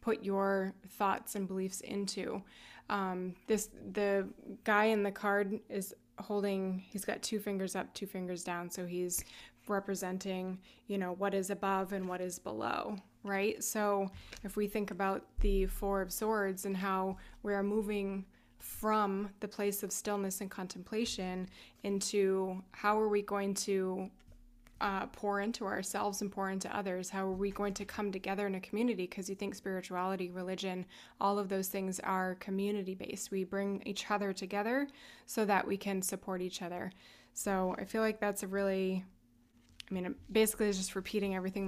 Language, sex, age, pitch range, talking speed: English, female, 20-39, 190-205 Hz, 170 wpm